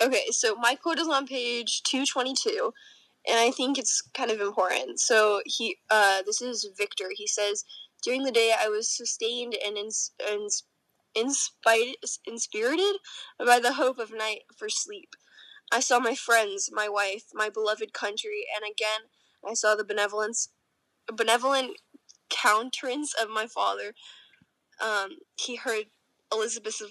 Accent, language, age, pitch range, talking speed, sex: American, English, 10-29, 210-275 Hz, 150 wpm, female